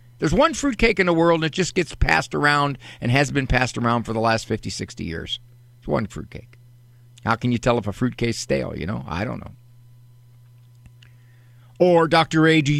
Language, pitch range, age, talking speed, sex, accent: English, 120-155 Hz, 50-69, 200 wpm, male, American